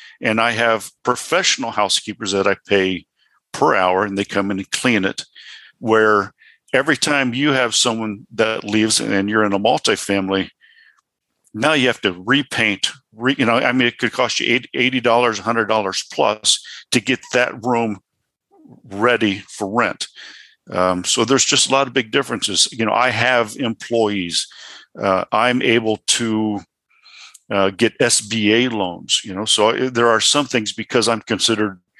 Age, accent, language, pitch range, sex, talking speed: 50-69, American, English, 100-120 Hz, male, 165 wpm